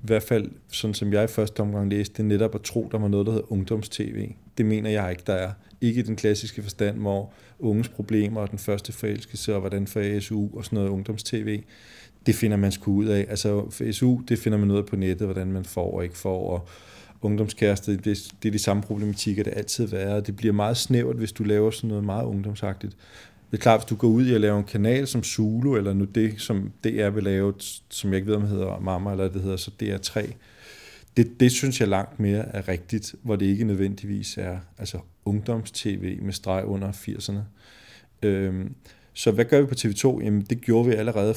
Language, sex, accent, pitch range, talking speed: Danish, male, native, 100-110 Hz, 220 wpm